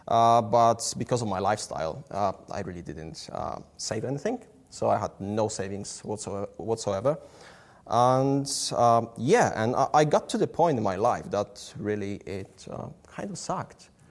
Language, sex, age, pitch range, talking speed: English, male, 20-39, 100-120 Hz, 165 wpm